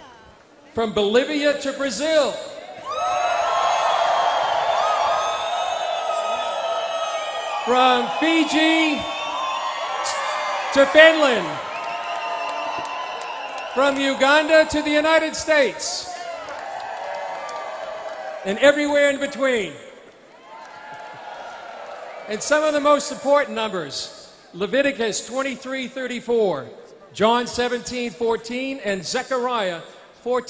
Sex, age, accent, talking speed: male, 40-59, American, 60 wpm